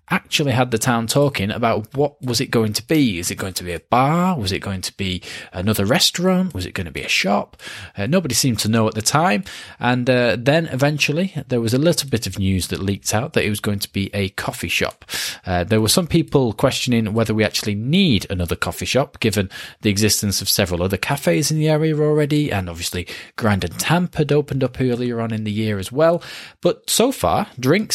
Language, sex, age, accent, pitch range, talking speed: English, male, 20-39, British, 100-150 Hz, 230 wpm